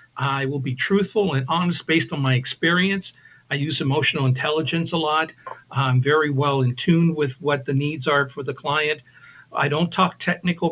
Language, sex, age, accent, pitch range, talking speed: English, male, 60-79, American, 135-175 Hz, 185 wpm